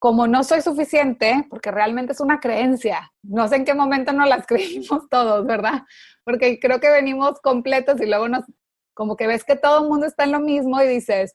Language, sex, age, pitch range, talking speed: English, female, 30-49, 225-275 Hz, 210 wpm